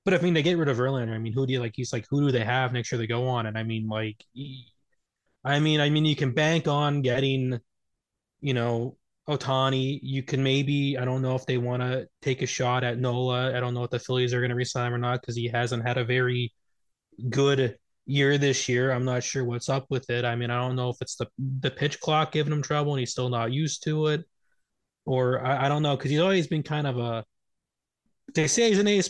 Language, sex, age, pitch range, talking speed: English, male, 20-39, 120-140 Hz, 255 wpm